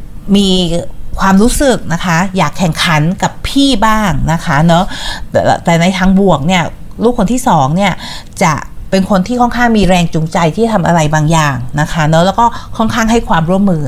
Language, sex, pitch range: Thai, female, 160-210 Hz